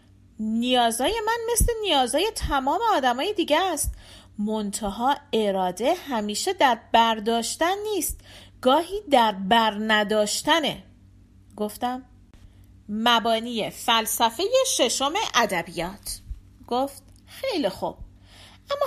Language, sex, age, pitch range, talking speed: Persian, female, 40-59, 175-275 Hz, 85 wpm